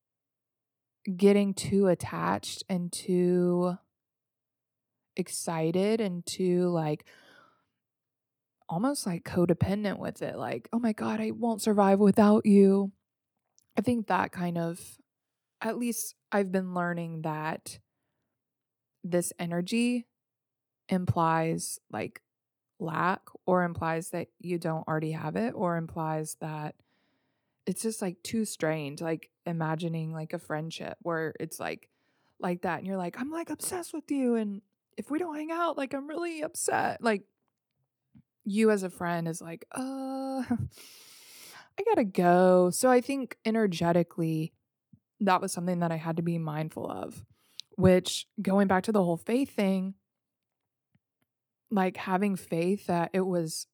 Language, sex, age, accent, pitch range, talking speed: English, female, 20-39, American, 160-210 Hz, 135 wpm